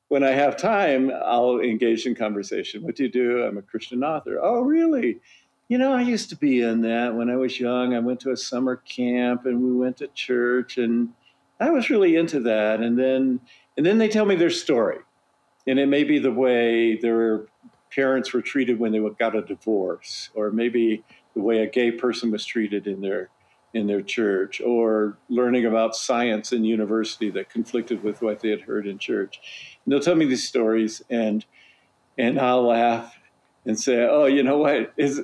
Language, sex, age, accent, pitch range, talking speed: English, male, 50-69, American, 115-145 Hz, 200 wpm